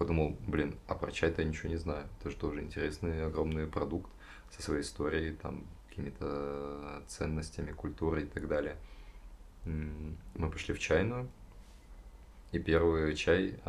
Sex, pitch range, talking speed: male, 75-85 Hz, 140 wpm